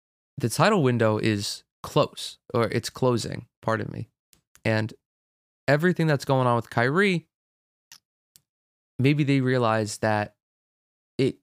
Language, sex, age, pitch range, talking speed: English, male, 20-39, 110-130 Hz, 115 wpm